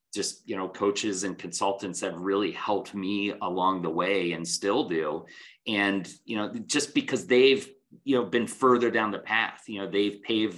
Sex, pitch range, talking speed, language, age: male, 95-120 Hz, 185 wpm, English, 30-49